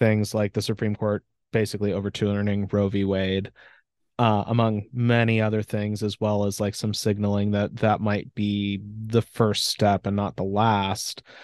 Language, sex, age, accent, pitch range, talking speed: English, male, 30-49, American, 100-115 Hz, 170 wpm